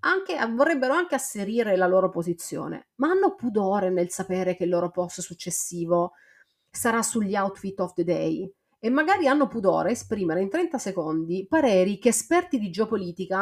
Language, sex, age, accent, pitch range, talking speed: Italian, female, 30-49, native, 180-265 Hz, 165 wpm